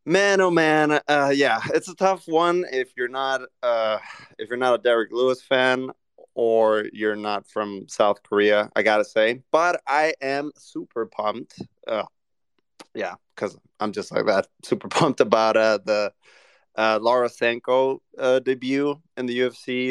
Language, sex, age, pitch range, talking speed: English, male, 20-39, 110-130 Hz, 165 wpm